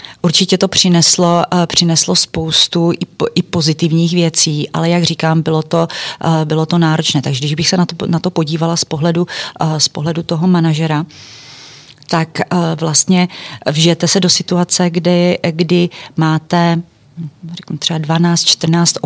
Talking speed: 125 wpm